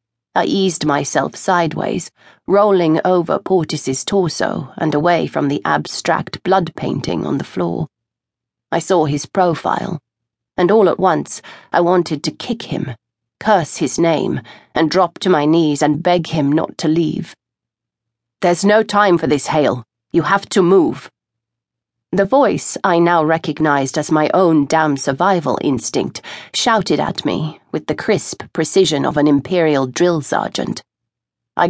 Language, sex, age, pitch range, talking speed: English, female, 30-49, 145-185 Hz, 150 wpm